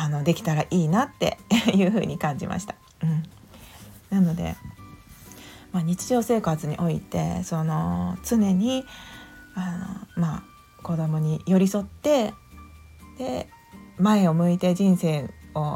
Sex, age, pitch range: female, 40-59, 165-220 Hz